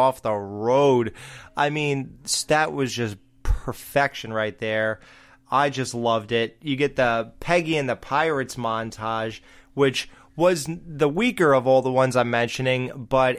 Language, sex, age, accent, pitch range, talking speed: English, male, 20-39, American, 120-150 Hz, 150 wpm